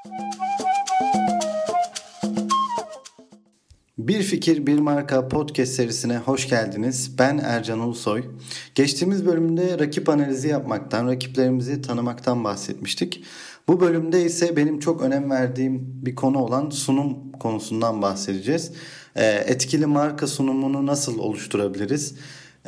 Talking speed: 100 wpm